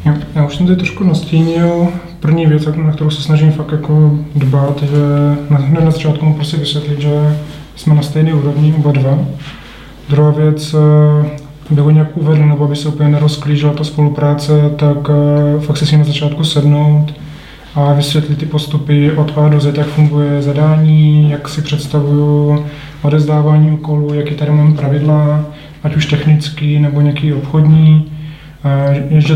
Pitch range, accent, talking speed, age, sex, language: 145-150 Hz, native, 155 wpm, 20-39, male, Czech